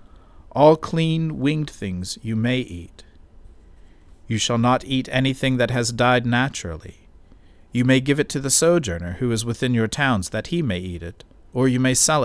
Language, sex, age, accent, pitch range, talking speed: English, male, 50-69, American, 85-125 Hz, 180 wpm